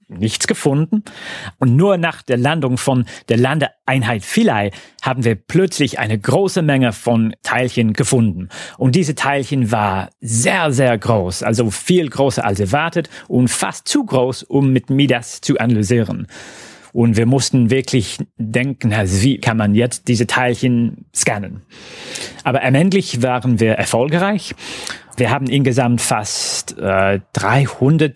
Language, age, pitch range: German, 40-59, 115-145 Hz